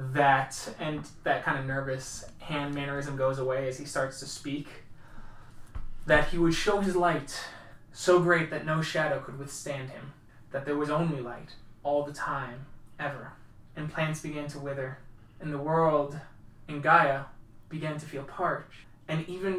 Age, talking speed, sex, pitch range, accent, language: 20-39, 165 wpm, male, 130-160 Hz, American, English